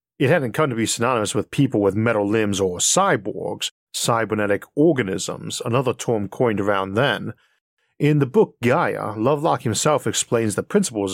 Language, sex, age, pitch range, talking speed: English, male, 40-59, 105-140 Hz, 155 wpm